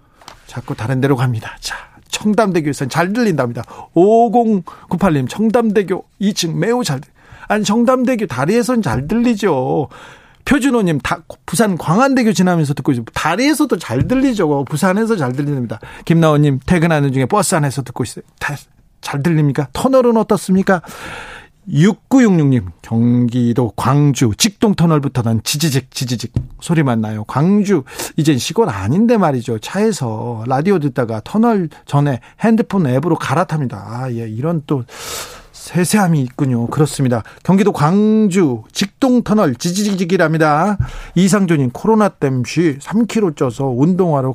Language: Korean